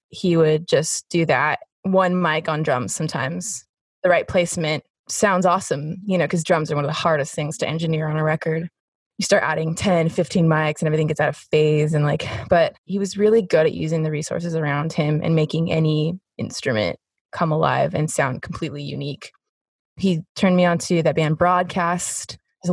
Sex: female